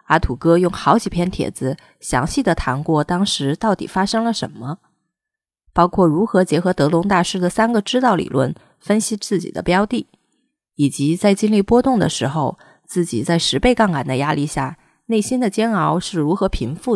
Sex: female